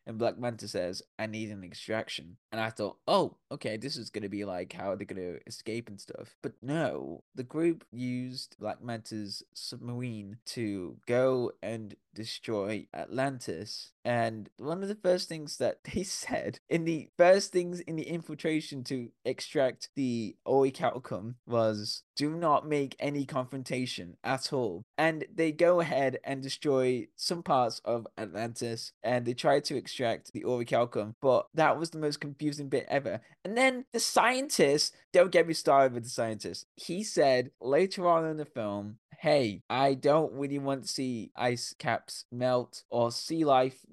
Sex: male